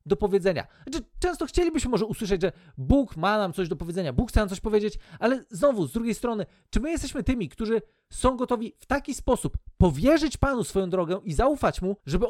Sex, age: male, 40-59